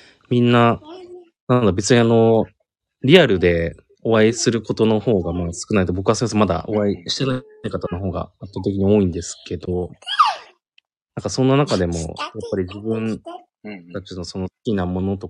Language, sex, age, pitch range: Japanese, male, 20-39, 90-125 Hz